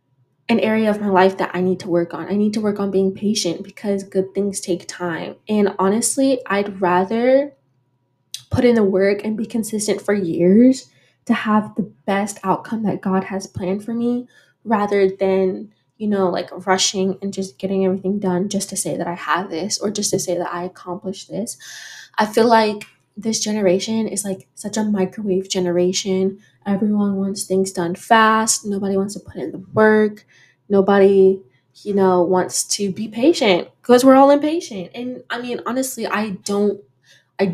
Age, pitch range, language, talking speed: 20-39, 185-215 Hz, English, 180 wpm